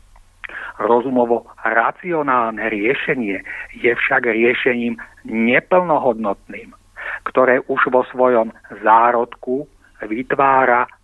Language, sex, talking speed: Czech, male, 65 wpm